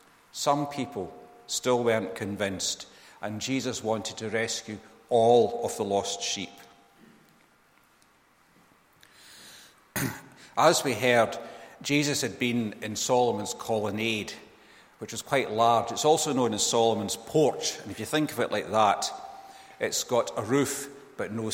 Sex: male